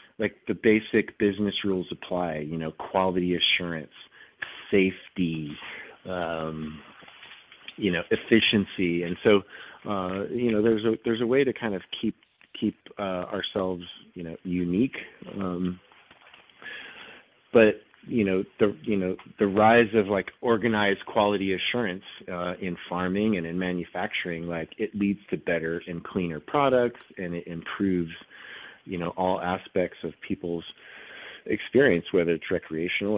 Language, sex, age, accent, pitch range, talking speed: English, male, 30-49, American, 85-105 Hz, 135 wpm